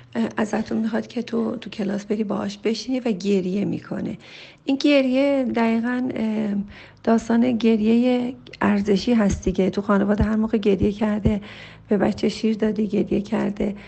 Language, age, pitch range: Persian, 40-59, 205-255 Hz